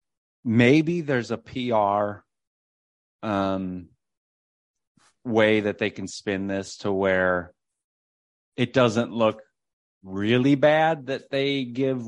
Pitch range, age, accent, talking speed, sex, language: 95-120 Hz, 30-49, American, 105 wpm, male, English